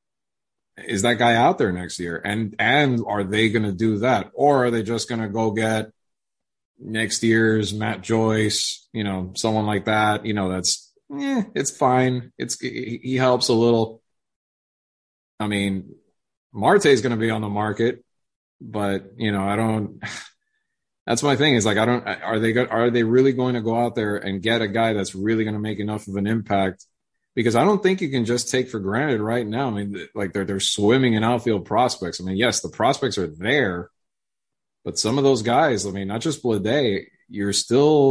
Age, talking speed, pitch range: 30-49, 200 wpm, 100-120 Hz